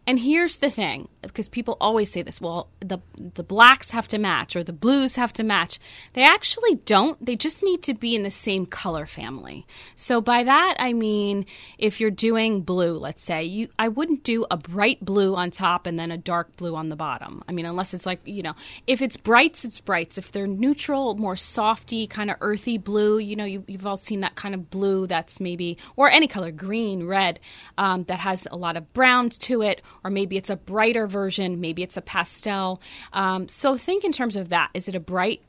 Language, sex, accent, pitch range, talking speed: English, female, American, 180-230 Hz, 220 wpm